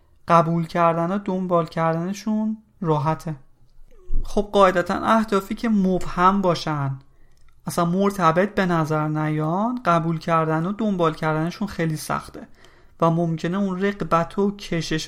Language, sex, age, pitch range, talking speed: Persian, male, 30-49, 155-195 Hz, 120 wpm